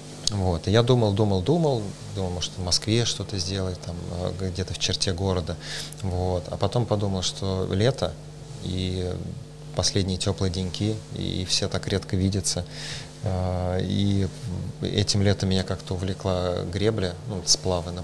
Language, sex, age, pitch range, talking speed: Russian, male, 20-39, 90-105 Hz, 135 wpm